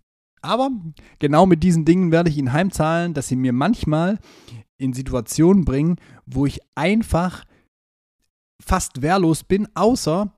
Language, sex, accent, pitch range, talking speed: German, male, German, 130-165 Hz, 135 wpm